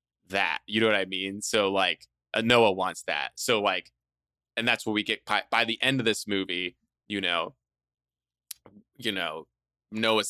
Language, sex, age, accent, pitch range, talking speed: English, male, 20-39, American, 95-115 Hz, 175 wpm